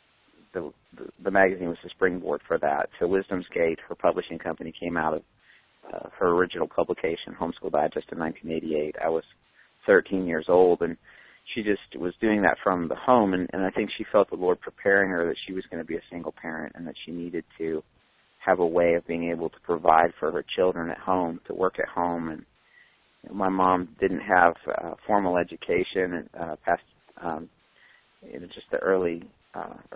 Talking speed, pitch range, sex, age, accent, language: 200 wpm, 85-95 Hz, male, 40-59, American, English